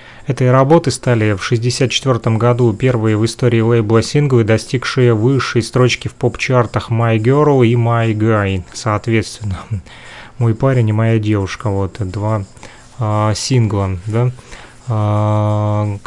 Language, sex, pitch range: Russian, male, 110-130 Hz